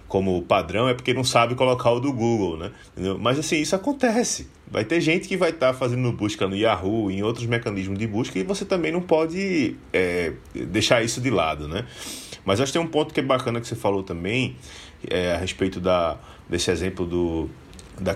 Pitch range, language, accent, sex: 95-125 Hz, Portuguese, Brazilian, male